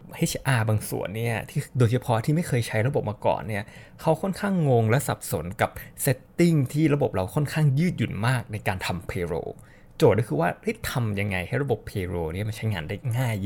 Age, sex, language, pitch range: 20-39, male, Thai, 105-150 Hz